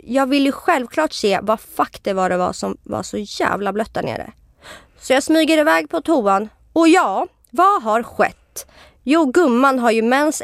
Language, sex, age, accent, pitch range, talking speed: Swedish, female, 30-49, native, 205-275 Hz, 185 wpm